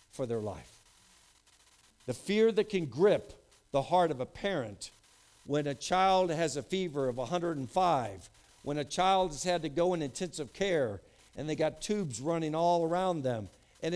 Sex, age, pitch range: male, 60-79, 170-240 Hz